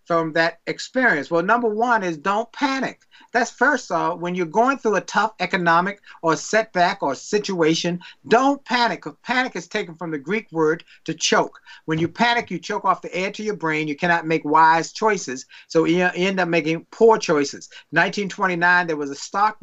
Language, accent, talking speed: English, American, 195 wpm